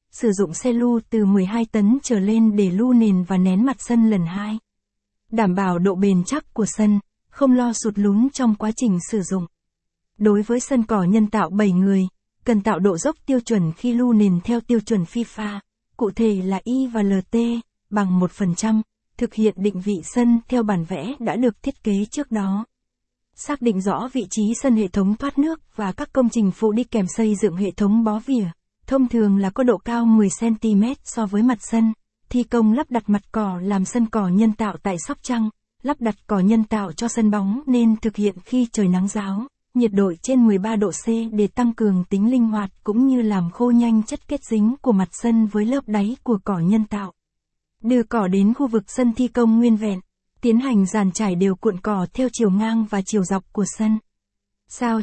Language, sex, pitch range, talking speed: Vietnamese, female, 200-235 Hz, 215 wpm